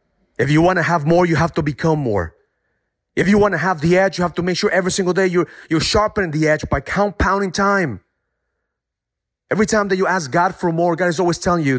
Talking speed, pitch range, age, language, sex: 240 wpm, 100-155 Hz, 30-49, English, male